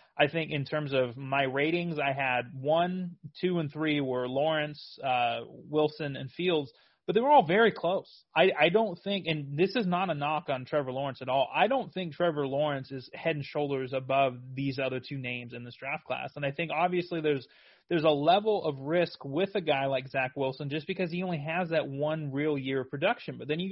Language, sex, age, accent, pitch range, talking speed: English, male, 30-49, American, 135-170 Hz, 225 wpm